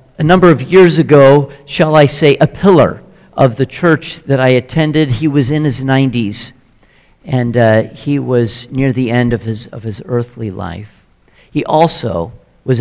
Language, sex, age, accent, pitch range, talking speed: English, male, 50-69, American, 120-160 Hz, 175 wpm